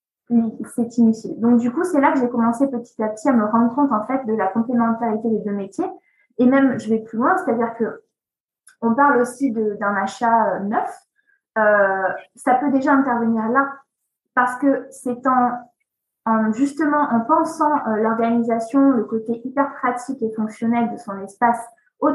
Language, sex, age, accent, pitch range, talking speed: French, female, 20-39, French, 215-275 Hz, 190 wpm